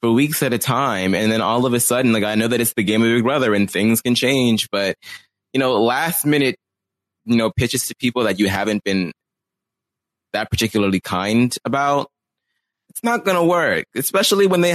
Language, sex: English, male